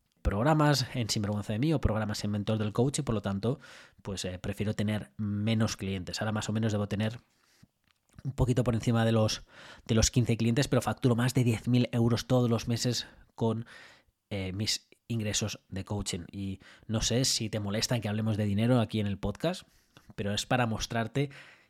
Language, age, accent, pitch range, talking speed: Spanish, 20-39, Spanish, 105-125 Hz, 195 wpm